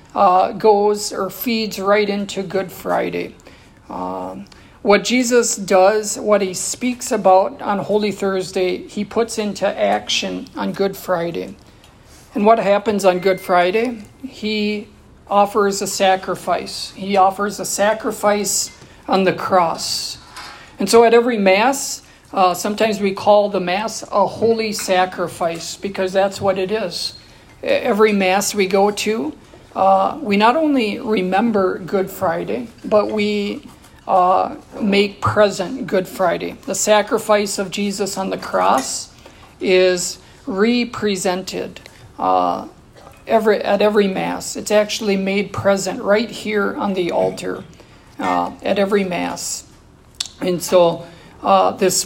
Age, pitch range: 50-69, 185-215 Hz